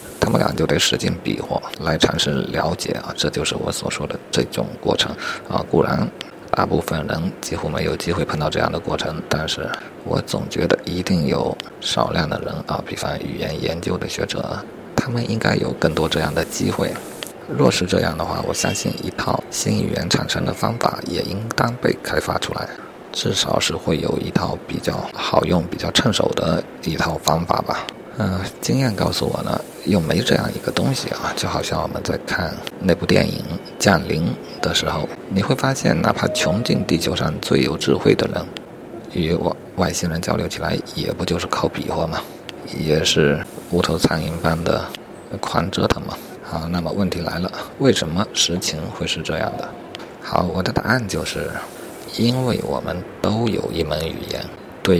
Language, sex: Chinese, male